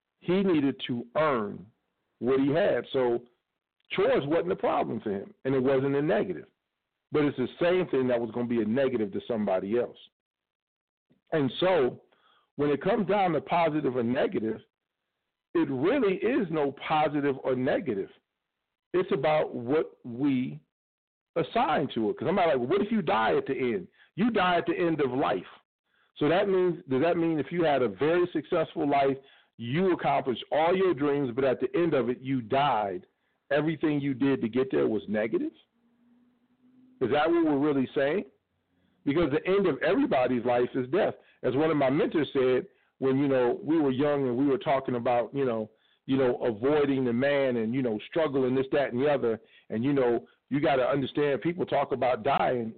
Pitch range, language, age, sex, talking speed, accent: 130-175 Hz, English, 50-69, male, 190 wpm, American